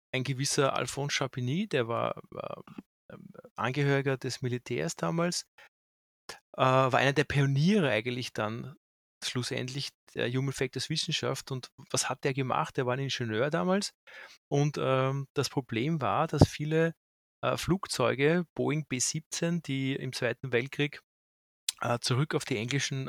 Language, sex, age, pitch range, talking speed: German, male, 30-49, 130-155 Hz, 140 wpm